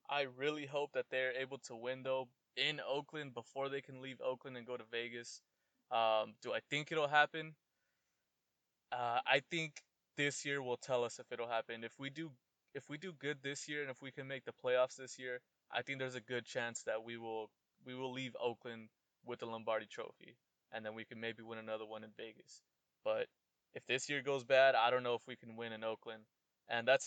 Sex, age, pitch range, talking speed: male, 20-39, 115-135 Hz, 220 wpm